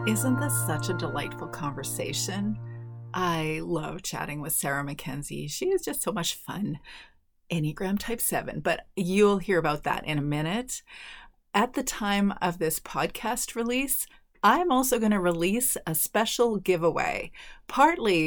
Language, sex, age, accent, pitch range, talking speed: English, female, 30-49, American, 160-230 Hz, 150 wpm